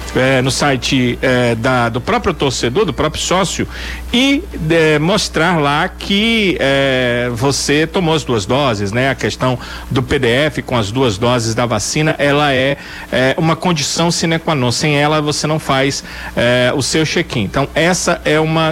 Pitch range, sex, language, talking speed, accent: 130-165 Hz, male, Portuguese, 155 wpm, Brazilian